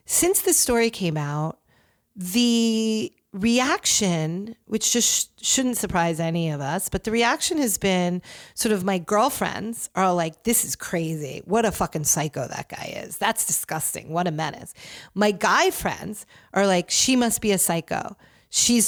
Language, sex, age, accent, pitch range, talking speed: English, female, 40-59, American, 170-225 Hz, 165 wpm